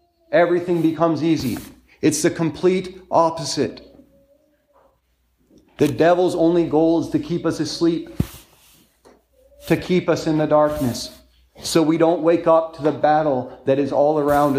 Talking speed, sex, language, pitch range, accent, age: 140 wpm, male, English, 130-170 Hz, American, 40-59